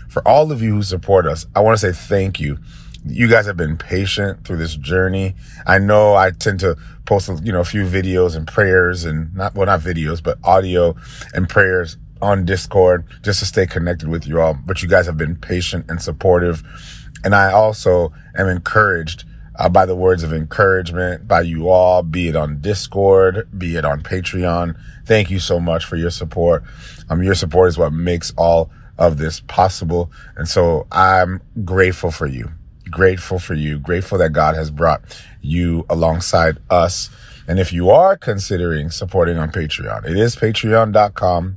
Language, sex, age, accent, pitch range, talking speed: English, male, 30-49, American, 85-110 Hz, 185 wpm